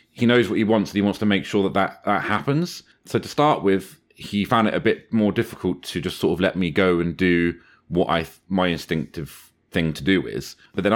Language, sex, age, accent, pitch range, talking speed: English, male, 30-49, British, 85-110 Hz, 240 wpm